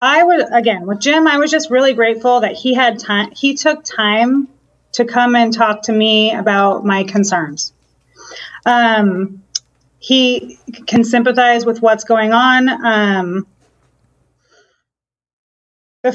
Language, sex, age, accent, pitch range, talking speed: English, female, 30-49, American, 205-245 Hz, 135 wpm